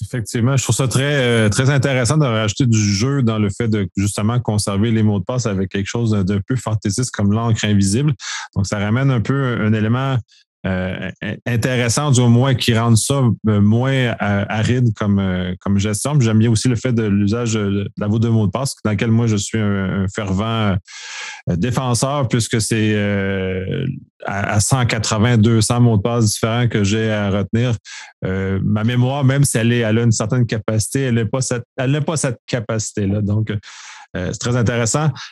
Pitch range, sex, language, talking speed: 105-130 Hz, male, French, 185 wpm